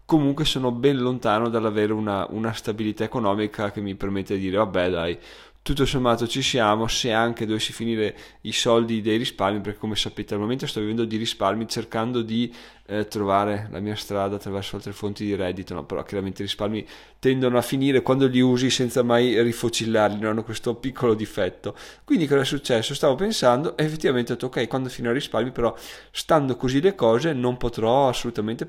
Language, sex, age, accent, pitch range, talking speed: Italian, male, 20-39, native, 105-125 Hz, 185 wpm